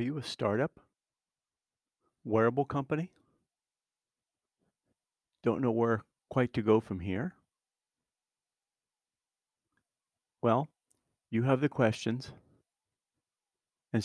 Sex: male